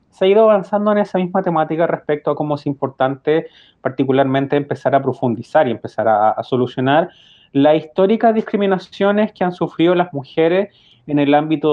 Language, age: English, 30-49